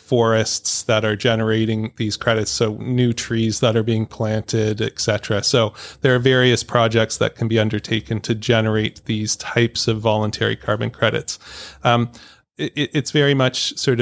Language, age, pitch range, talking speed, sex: English, 30-49, 110-130 Hz, 160 wpm, male